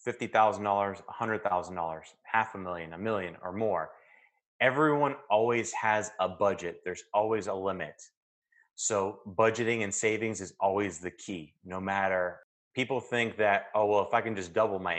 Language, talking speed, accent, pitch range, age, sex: English, 150 wpm, American, 90-115 Hz, 30-49, male